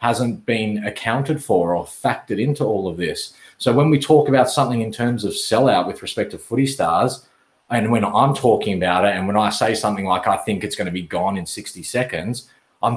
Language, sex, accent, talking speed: English, male, Australian, 215 wpm